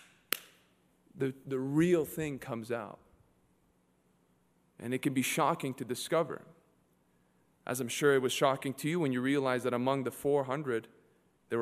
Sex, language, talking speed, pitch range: male, English, 155 wpm, 130-165 Hz